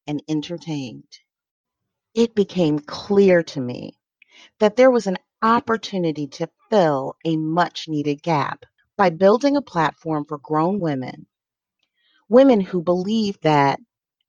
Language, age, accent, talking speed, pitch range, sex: English, 40-59, American, 120 wpm, 145-195 Hz, female